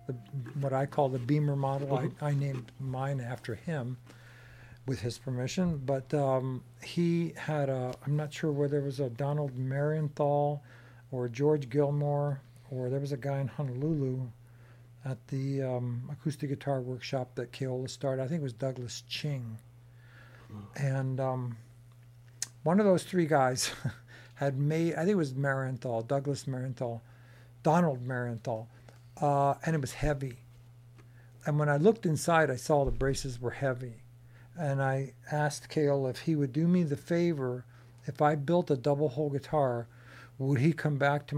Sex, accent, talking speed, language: male, American, 160 wpm, English